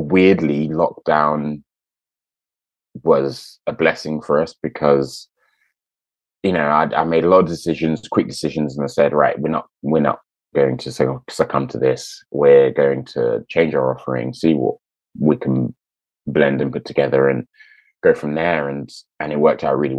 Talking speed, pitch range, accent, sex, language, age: 170 wpm, 70-80 Hz, British, male, English, 20-39